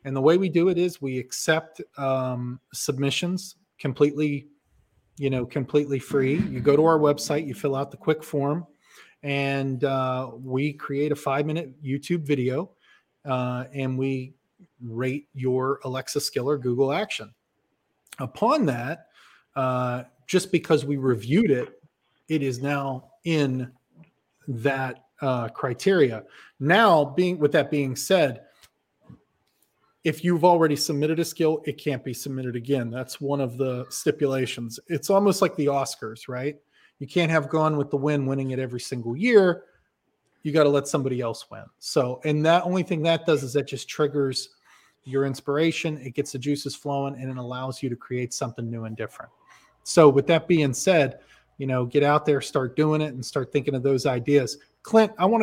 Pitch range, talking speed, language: 130-155 Hz, 170 wpm, English